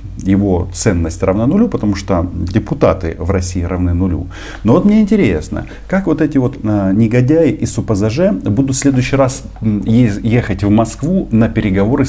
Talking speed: 155 wpm